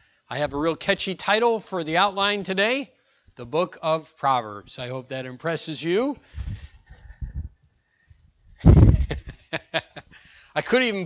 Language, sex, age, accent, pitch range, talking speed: English, male, 50-69, American, 120-195 Hz, 120 wpm